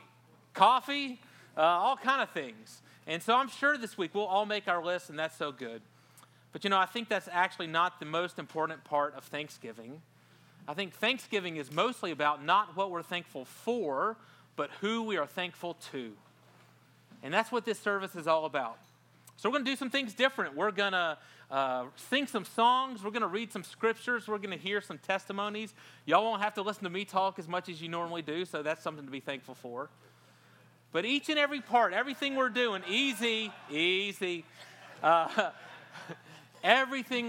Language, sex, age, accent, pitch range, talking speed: English, male, 30-49, American, 150-215 Hz, 190 wpm